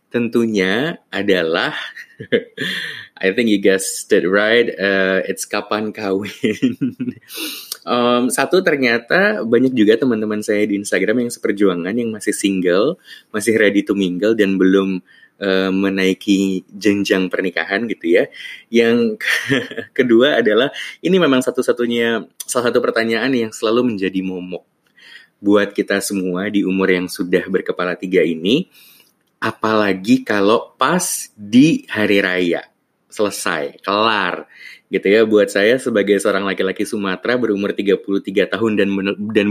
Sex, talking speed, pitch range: male, 125 wpm, 95-110 Hz